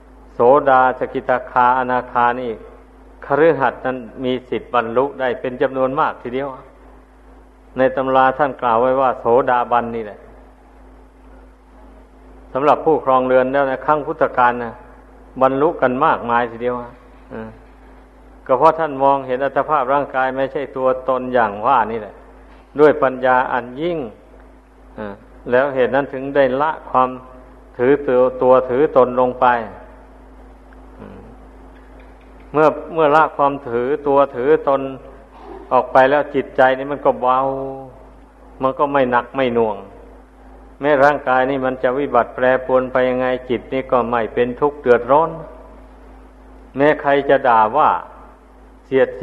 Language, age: Thai, 60-79